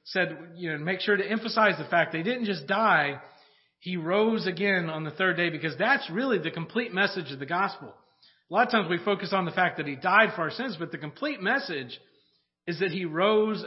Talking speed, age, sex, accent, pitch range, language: 230 wpm, 40-59, male, American, 150-200 Hz, English